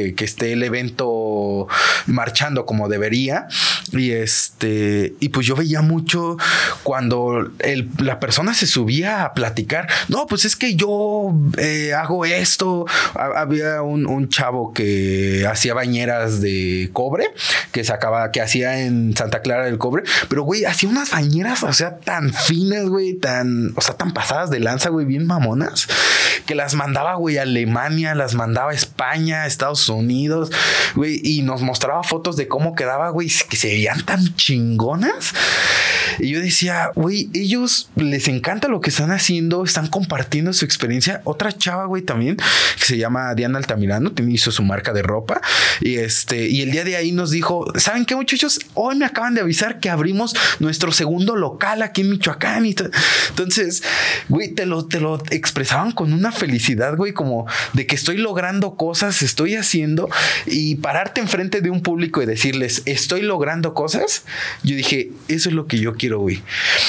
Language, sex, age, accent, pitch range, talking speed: Spanish, male, 30-49, Mexican, 125-175 Hz, 170 wpm